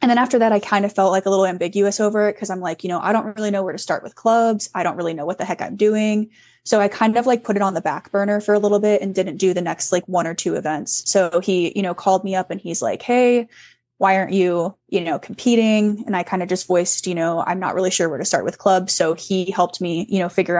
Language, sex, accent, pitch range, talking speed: English, female, American, 180-210 Hz, 300 wpm